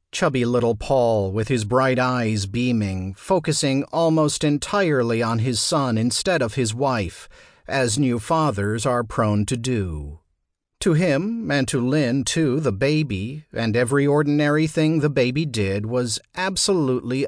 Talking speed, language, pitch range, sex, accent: 145 wpm, English, 110-160 Hz, male, American